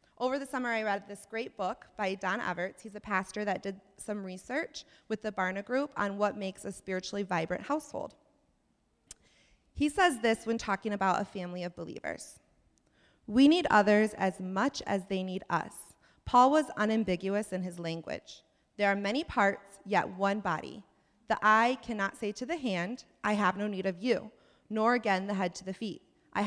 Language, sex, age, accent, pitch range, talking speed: English, female, 20-39, American, 190-245 Hz, 185 wpm